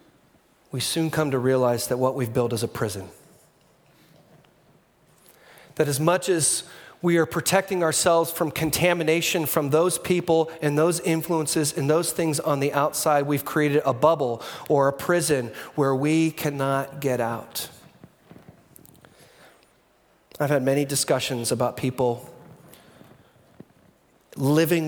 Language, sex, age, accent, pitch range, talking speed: English, male, 40-59, American, 125-160 Hz, 130 wpm